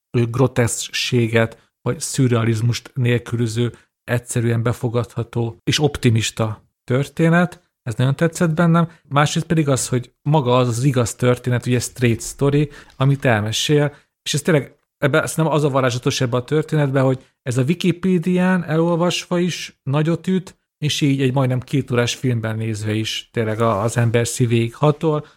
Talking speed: 140 wpm